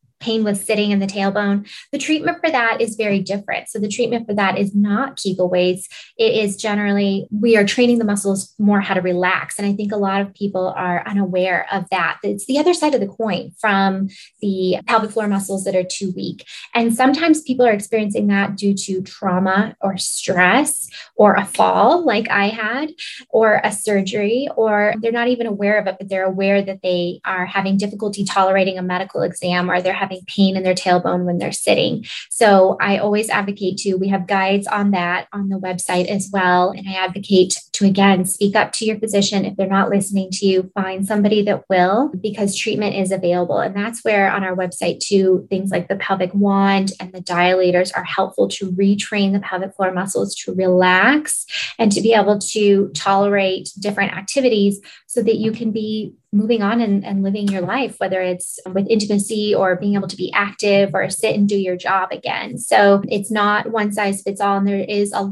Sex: female